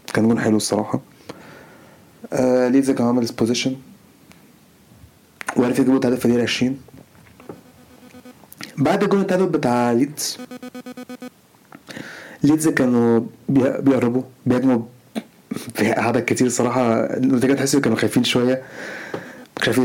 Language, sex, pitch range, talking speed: Arabic, male, 120-155 Hz, 100 wpm